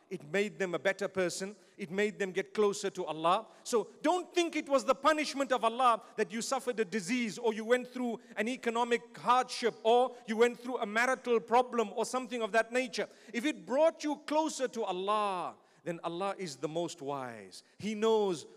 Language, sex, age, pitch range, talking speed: English, male, 40-59, 205-260 Hz, 195 wpm